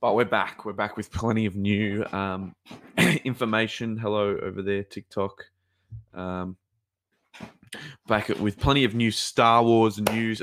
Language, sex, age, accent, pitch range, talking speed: English, male, 20-39, Australian, 95-115 Hz, 140 wpm